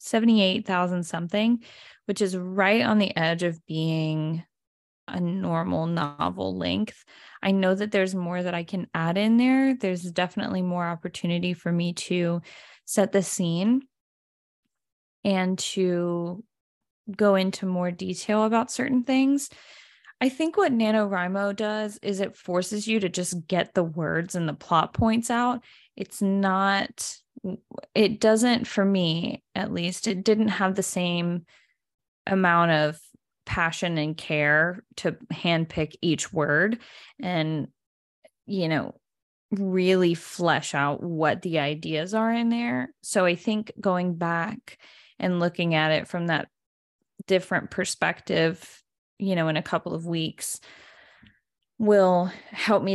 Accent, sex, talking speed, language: American, female, 135 wpm, English